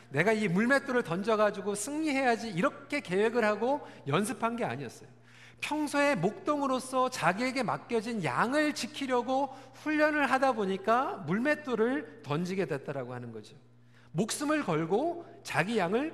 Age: 40-59